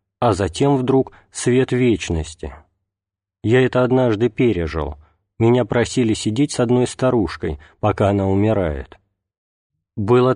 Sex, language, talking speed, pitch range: male, Russian, 110 wpm, 100-120 Hz